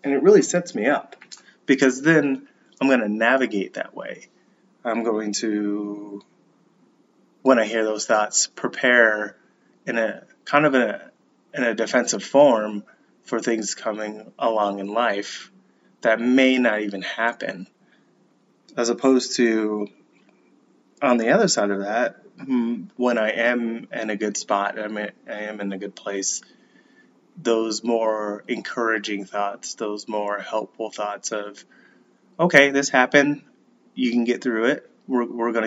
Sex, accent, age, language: male, American, 20-39, English